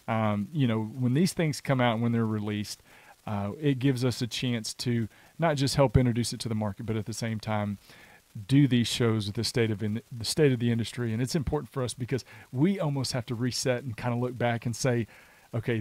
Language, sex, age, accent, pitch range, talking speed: English, male, 40-59, American, 115-140 Hz, 240 wpm